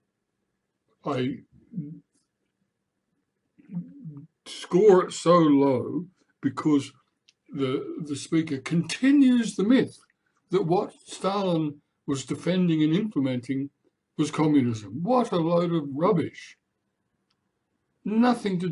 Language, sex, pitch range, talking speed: English, male, 140-180 Hz, 90 wpm